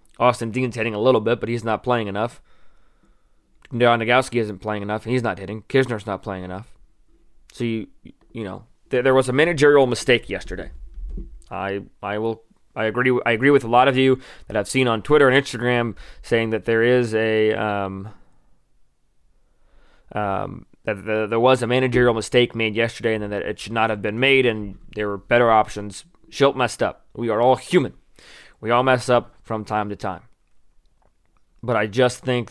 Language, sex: English, male